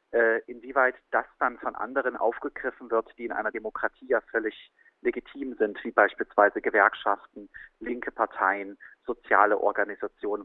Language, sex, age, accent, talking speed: German, male, 40-59, German, 125 wpm